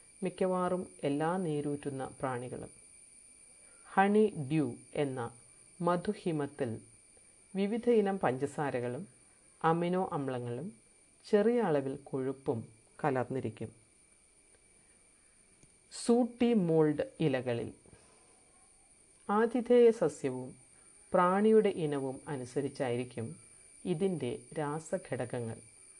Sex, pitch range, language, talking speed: female, 130-185 Hz, Malayalam, 60 wpm